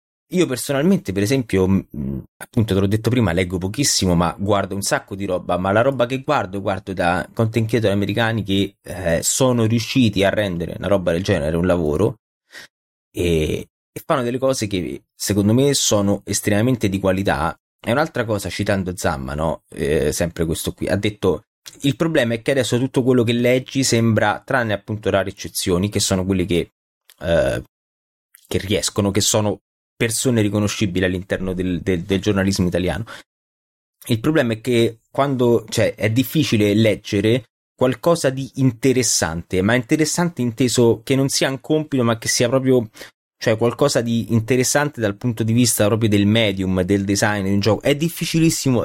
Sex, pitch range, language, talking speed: male, 95-125 Hz, Italian, 165 wpm